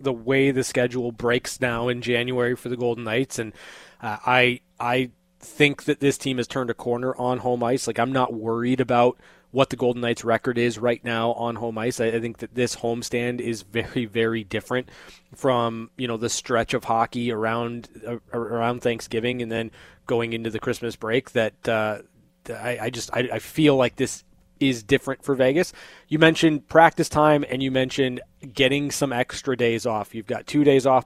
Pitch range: 115-135 Hz